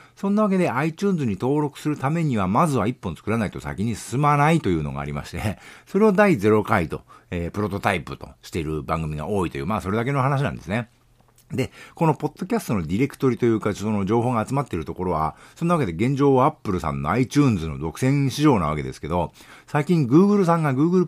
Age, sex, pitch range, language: 50-69, male, 90-140 Hz, Japanese